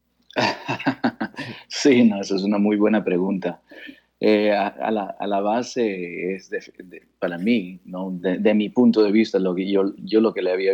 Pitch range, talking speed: 95-110 Hz, 195 wpm